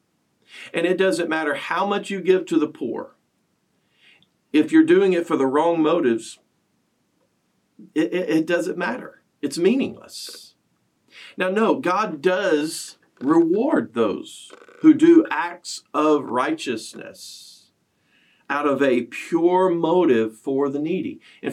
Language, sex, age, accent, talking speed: English, male, 50-69, American, 130 wpm